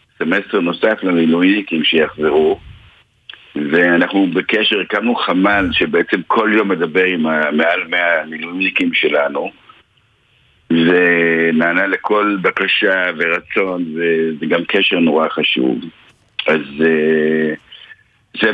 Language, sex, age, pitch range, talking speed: Hebrew, male, 60-79, 80-115 Hz, 95 wpm